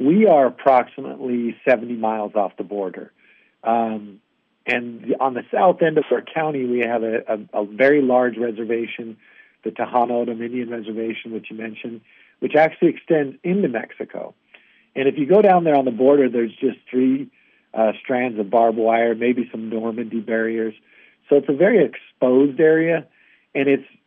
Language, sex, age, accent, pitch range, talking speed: English, male, 50-69, American, 115-135 Hz, 160 wpm